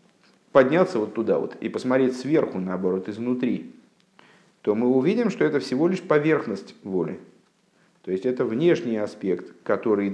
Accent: native